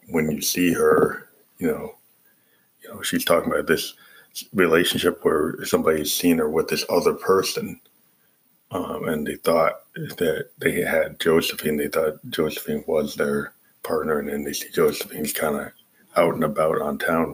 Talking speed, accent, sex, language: 165 wpm, American, male, English